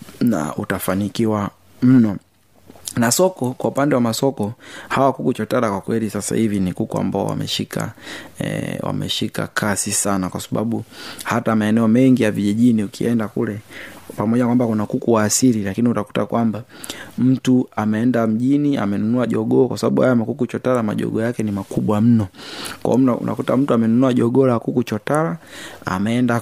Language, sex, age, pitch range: Swahili, male, 30-49, 105-125 Hz